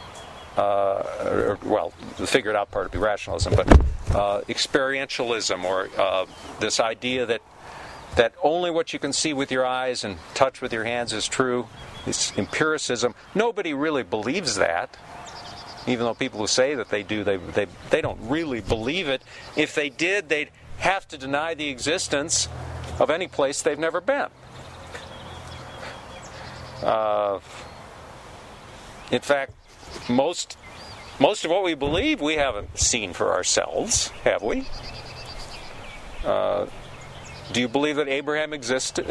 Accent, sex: American, male